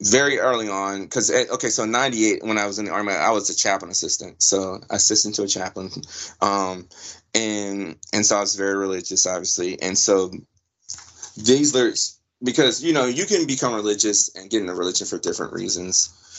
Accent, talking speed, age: American, 185 wpm, 20-39